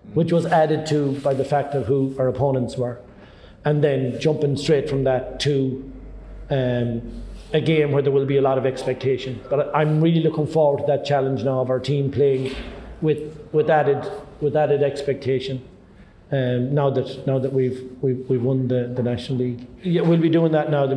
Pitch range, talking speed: 130-150 Hz, 195 wpm